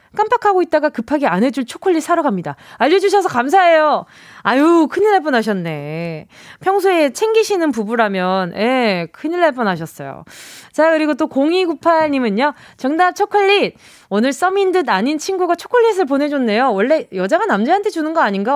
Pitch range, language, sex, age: 200-330 Hz, Korean, female, 20-39